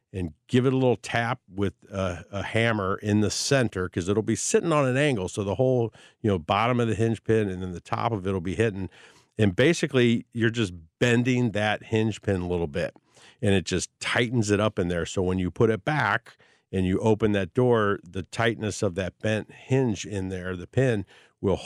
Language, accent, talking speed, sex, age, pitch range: English, American, 220 wpm, male, 50-69, 100-125 Hz